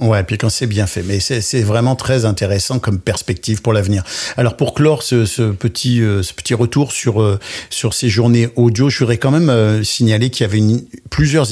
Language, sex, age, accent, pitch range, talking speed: French, male, 50-69, French, 110-130 Hz, 230 wpm